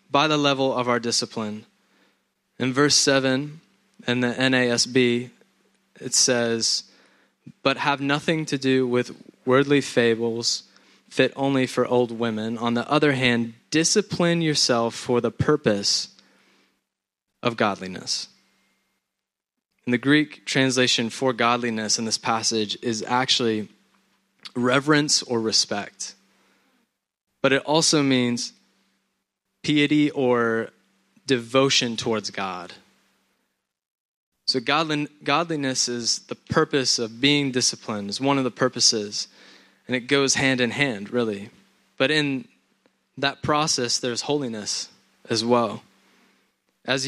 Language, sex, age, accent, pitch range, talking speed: English, male, 20-39, American, 115-140 Hz, 115 wpm